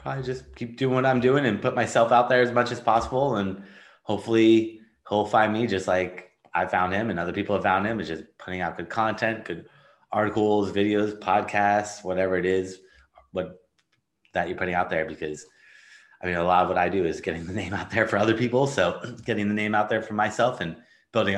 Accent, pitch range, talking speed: American, 90-110 Hz, 220 wpm